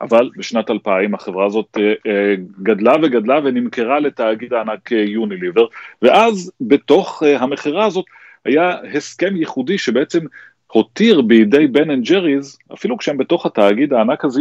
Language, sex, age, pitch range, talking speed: Hebrew, male, 30-49, 105-130 Hz, 125 wpm